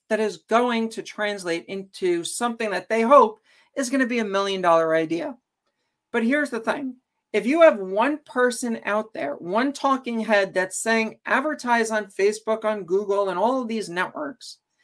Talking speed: 180 wpm